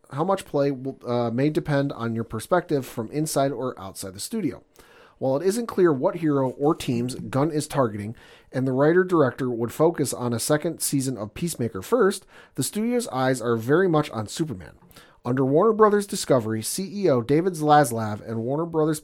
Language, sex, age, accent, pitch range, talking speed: English, male, 40-59, American, 120-155 Hz, 185 wpm